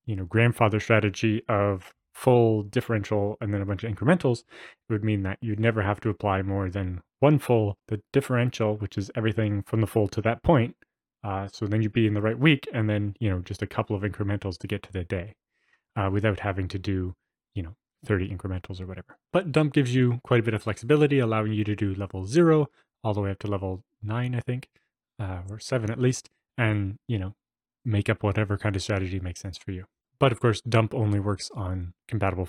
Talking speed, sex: 220 wpm, male